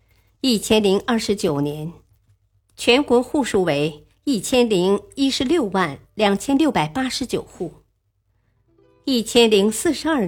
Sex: male